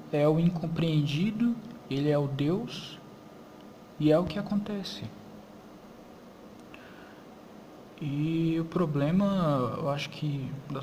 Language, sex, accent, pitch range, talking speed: Portuguese, male, Brazilian, 135-160 Hz, 105 wpm